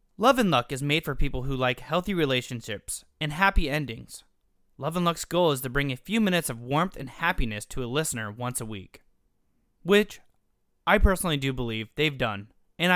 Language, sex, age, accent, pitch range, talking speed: English, male, 20-39, American, 125-180 Hz, 195 wpm